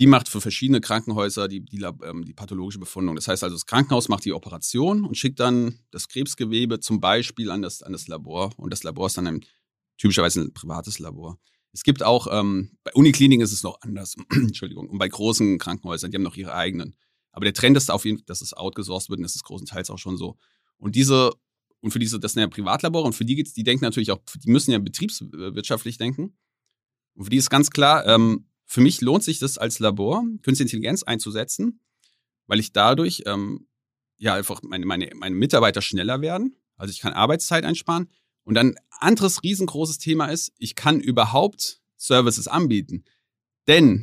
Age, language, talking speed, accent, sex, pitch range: 30-49, German, 200 wpm, German, male, 100-135 Hz